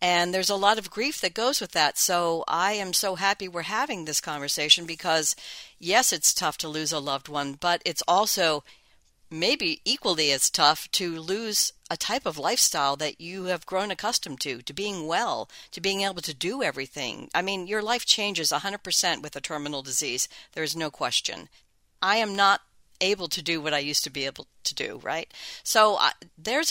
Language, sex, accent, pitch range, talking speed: English, female, American, 150-195 Hz, 200 wpm